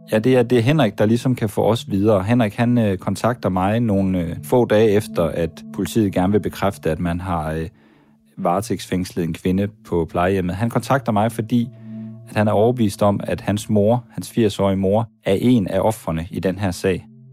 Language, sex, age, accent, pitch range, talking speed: Danish, male, 30-49, native, 90-115 Hz, 205 wpm